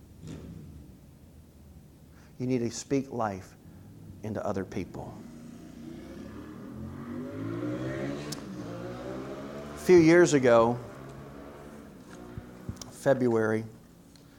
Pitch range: 100-125 Hz